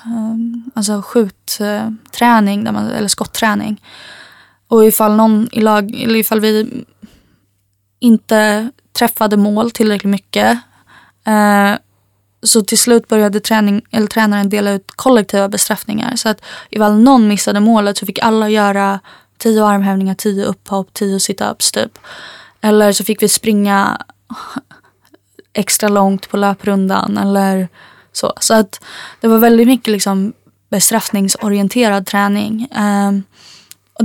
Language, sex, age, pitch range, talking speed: Swedish, female, 20-39, 200-225 Hz, 120 wpm